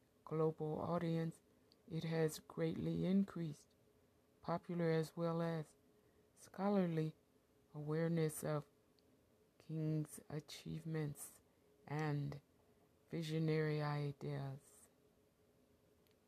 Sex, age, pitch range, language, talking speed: female, 60-79, 150-175 Hz, English, 65 wpm